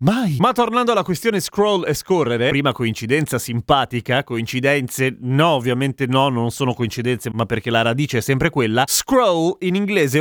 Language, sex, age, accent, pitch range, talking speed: Italian, male, 30-49, native, 130-185 Hz, 165 wpm